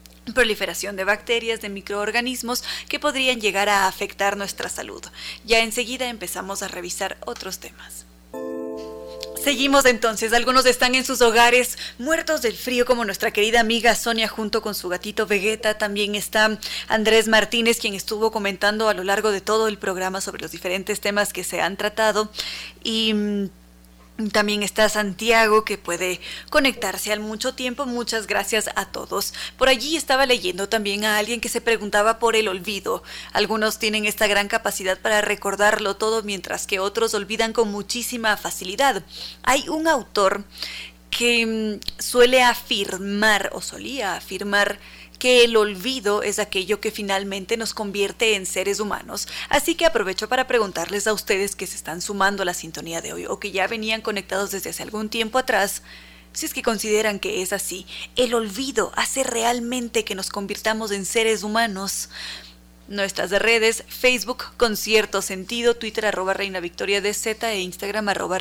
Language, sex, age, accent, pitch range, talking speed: Spanish, female, 20-39, Mexican, 195-230 Hz, 160 wpm